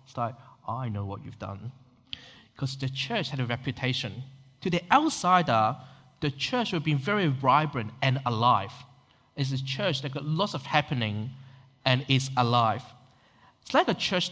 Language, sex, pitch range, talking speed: English, male, 125-155 Hz, 165 wpm